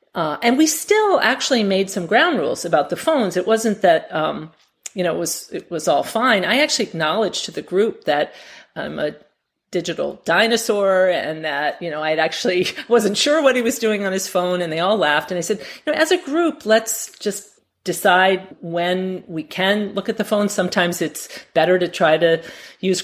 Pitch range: 175-235 Hz